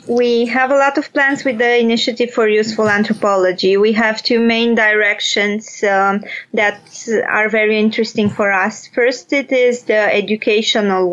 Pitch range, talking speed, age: 215-260 Hz, 155 wpm, 20-39